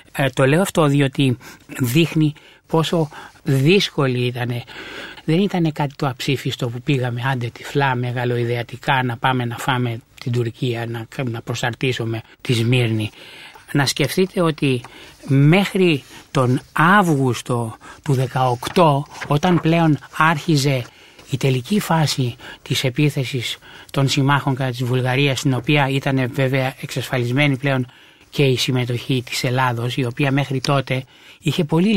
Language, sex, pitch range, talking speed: Greek, male, 125-150 Hz, 130 wpm